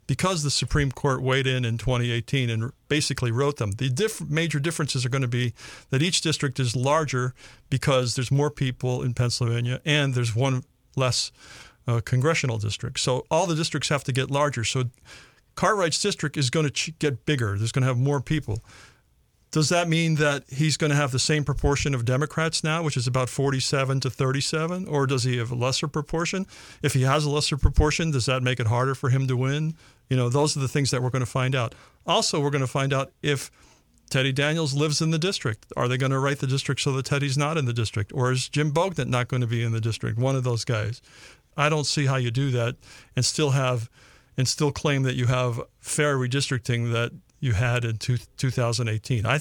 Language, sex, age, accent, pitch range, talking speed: English, male, 50-69, American, 125-145 Hz, 220 wpm